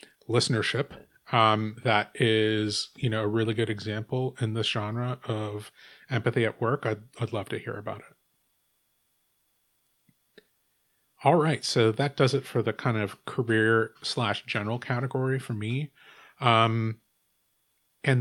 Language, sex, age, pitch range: English, male, 30-49, 110-130 Hz